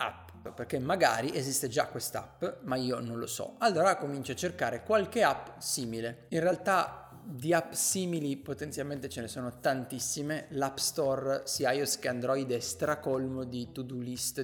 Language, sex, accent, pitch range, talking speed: Italian, male, native, 130-175 Hz, 160 wpm